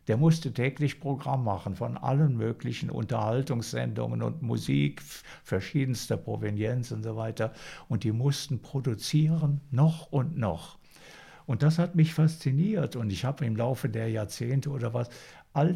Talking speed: 145 wpm